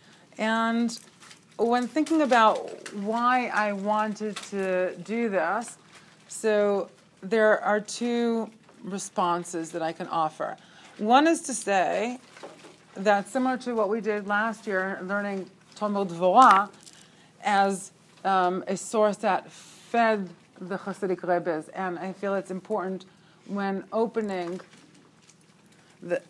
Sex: female